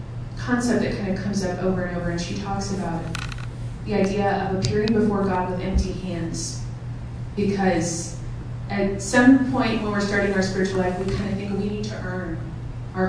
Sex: female